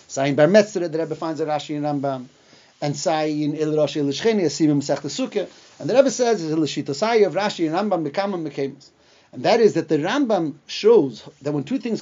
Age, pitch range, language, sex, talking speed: 40-59, 155-220 Hz, English, male, 210 wpm